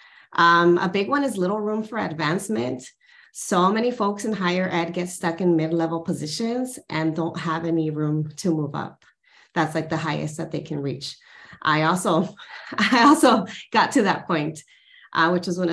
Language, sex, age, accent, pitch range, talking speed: English, female, 30-49, American, 155-180 Hz, 185 wpm